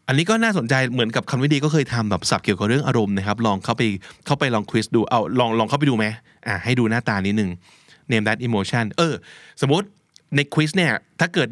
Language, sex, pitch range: Thai, male, 105-145 Hz